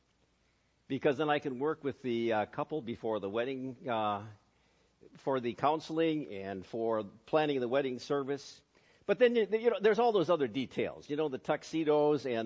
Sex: male